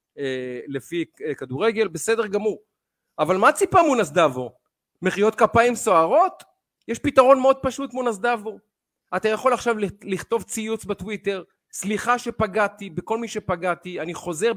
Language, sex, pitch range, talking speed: Hebrew, male, 185-245 Hz, 120 wpm